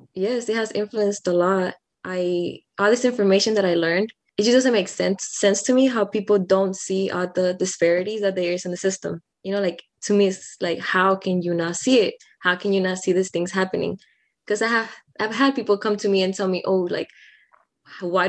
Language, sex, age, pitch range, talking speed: English, female, 20-39, 180-215 Hz, 230 wpm